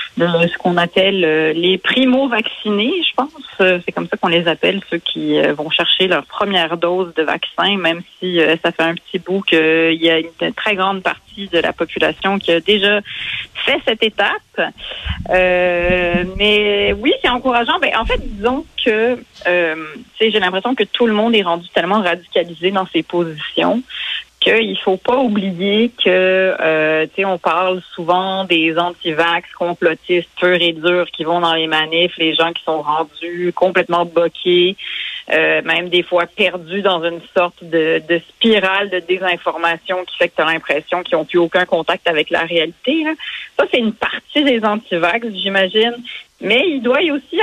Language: French